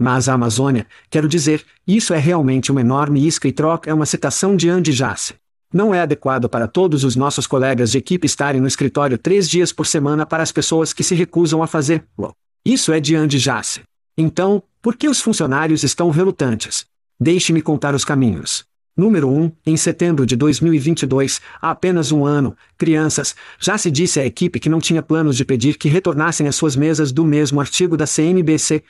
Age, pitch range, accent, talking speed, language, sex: 50-69, 135-170 Hz, Brazilian, 190 wpm, Portuguese, male